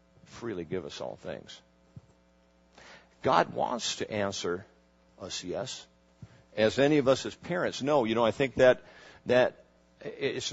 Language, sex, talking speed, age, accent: English, male, 140 wpm, 50-69, American